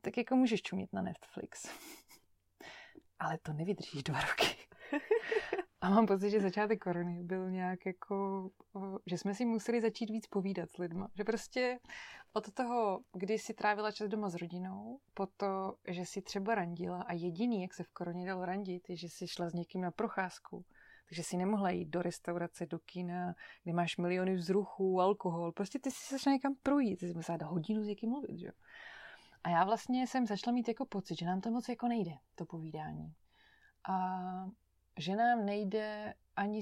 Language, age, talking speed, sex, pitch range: Slovak, 20-39, 180 wpm, female, 175-225 Hz